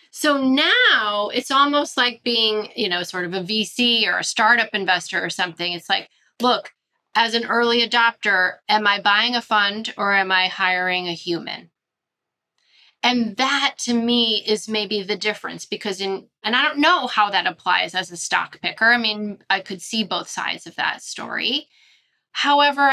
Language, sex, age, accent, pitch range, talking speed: English, female, 30-49, American, 200-260 Hz, 180 wpm